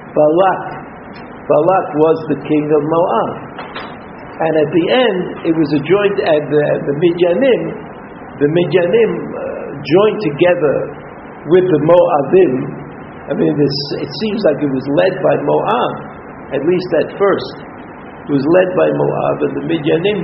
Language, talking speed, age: English, 140 wpm, 60-79